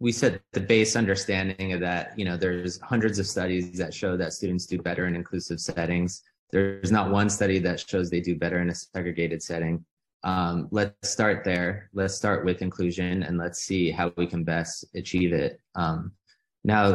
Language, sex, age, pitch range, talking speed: English, male, 20-39, 85-95 Hz, 190 wpm